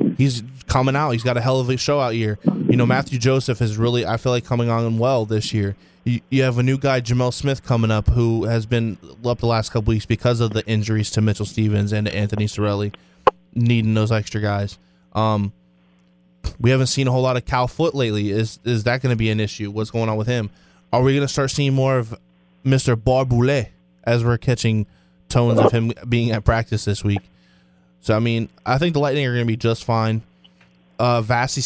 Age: 20-39